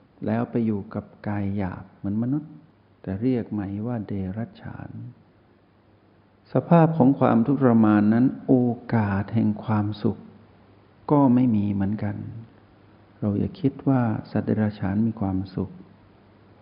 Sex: male